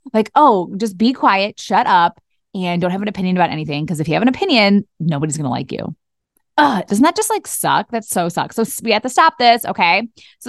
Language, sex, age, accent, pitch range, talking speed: English, female, 20-39, American, 180-245 Hz, 235 wpm